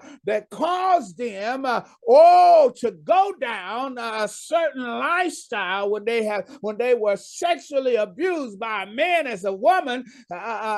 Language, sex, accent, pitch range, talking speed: English, male, American, 210-330 Hz, 150 wpm